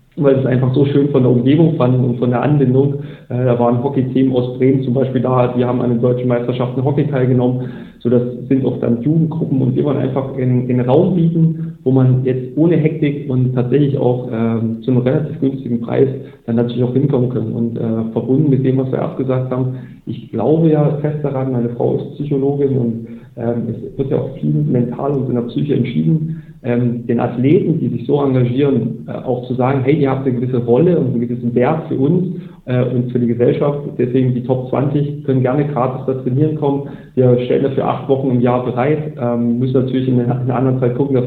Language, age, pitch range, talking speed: German, 40-59, 125-140 Hz, 210 wpm